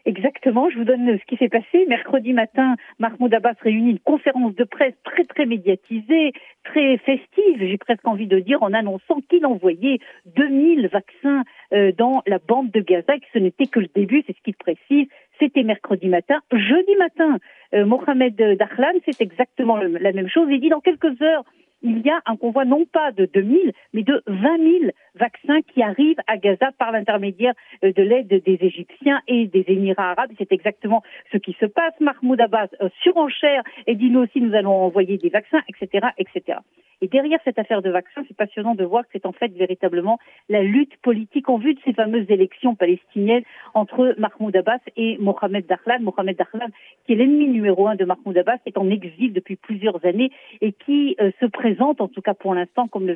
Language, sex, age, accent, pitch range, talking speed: Russian, female, 50-69, French, 195-270 Hz, 200 wpm